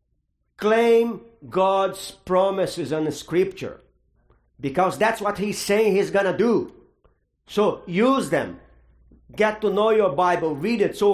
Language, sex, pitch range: English, male, 150-205 Hz